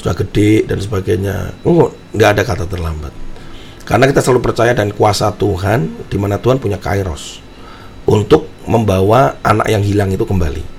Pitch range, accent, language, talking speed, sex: 90-110 Hz, native, Indonesian, 145 wpm, male